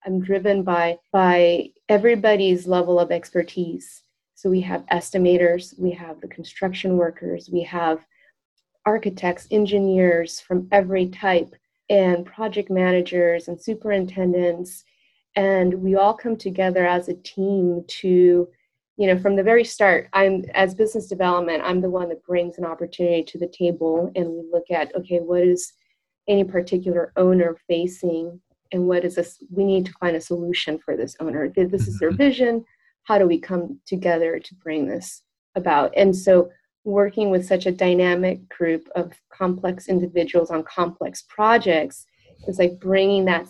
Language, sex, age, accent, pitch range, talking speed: English, female, 30-49, American, 170-190 Hz, 155 wpm